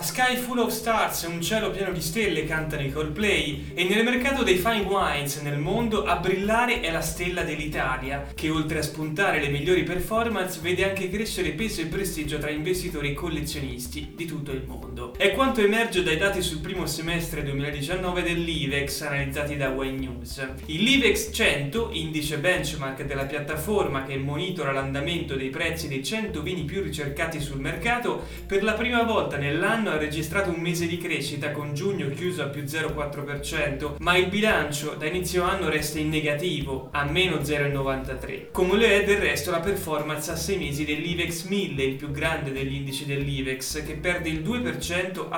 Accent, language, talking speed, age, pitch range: native, Italian, 175 wpm, 30-49, 145-190 Hz